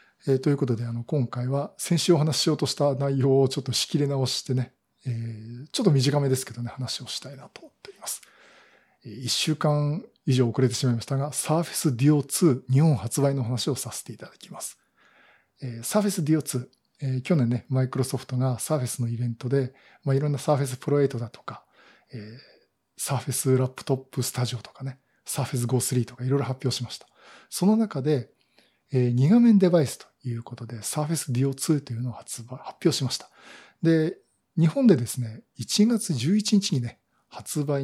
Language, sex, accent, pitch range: Japanese, male, native, 125-155 Hz